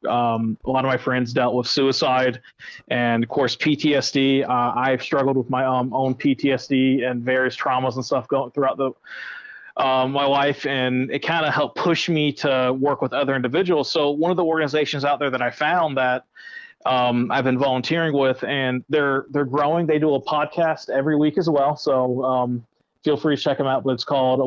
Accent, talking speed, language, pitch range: American, 205 wpm, English, 125-145 Hz